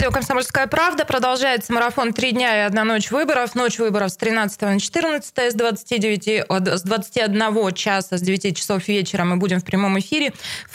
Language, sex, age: Russian, female, 20-39